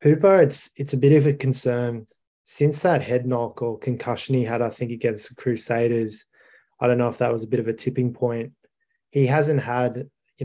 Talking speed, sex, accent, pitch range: 210 wpm, male, Australian, 115-130 Hz